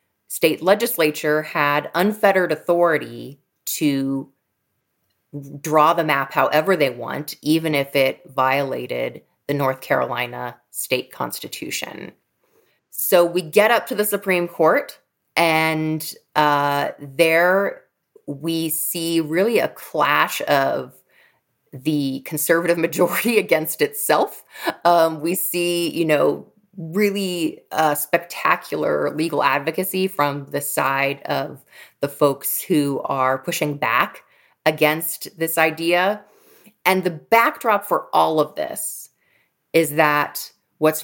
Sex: female